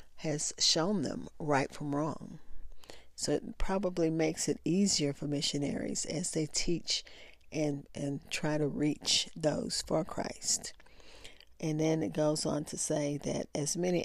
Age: 40-59